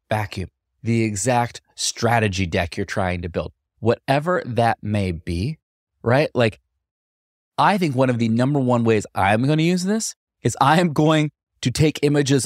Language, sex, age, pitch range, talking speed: English, male, 20-39, 105-150 Hz, 170 wpm